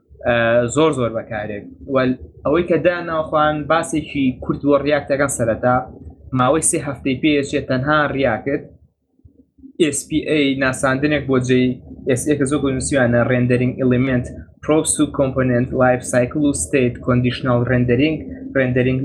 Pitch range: 125-145 Hz